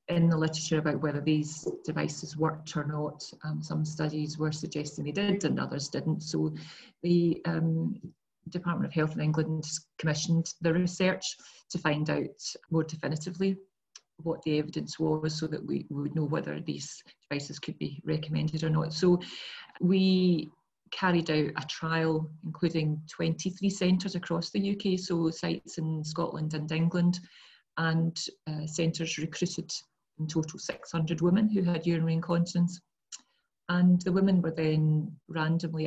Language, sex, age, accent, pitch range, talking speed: English, female, 40-59, British, 155-170 Hz, 145 wpm